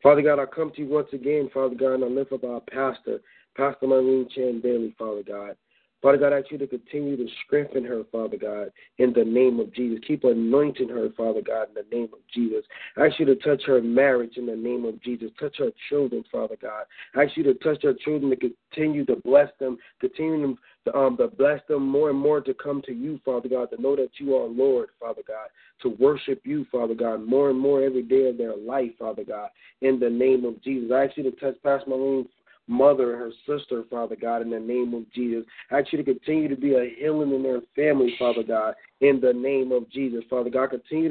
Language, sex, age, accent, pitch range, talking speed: English, male, 40-59, American, 125-145 Hz, 240 wpm